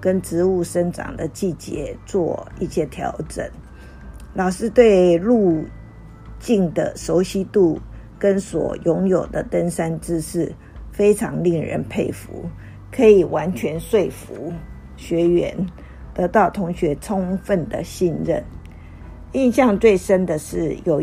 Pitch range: 150-195 Hz